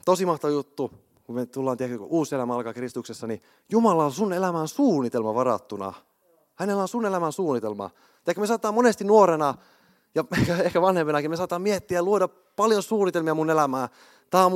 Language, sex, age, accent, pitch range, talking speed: Finnish, male, 30-49, native, 125-185 Hz, 175 wpm